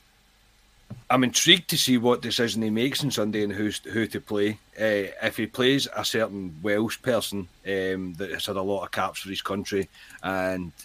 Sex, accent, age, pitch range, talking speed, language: male, British, 30-49, 100-115 Hz, 190 wpm, English